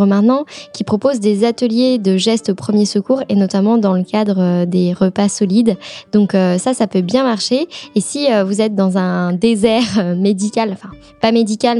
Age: 10-29